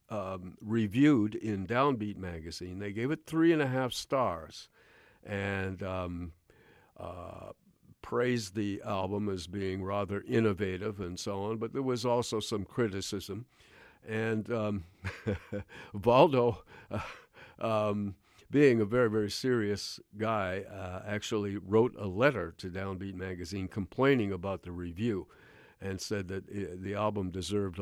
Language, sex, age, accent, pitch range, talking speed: English, male, 50-69, American, 95-110 Hz, 135 wpm